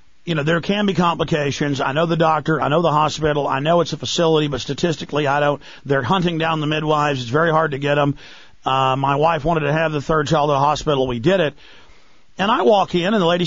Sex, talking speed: male, 250 wpm